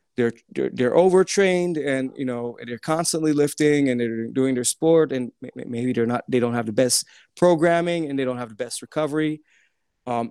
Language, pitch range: English, 130-150 Hz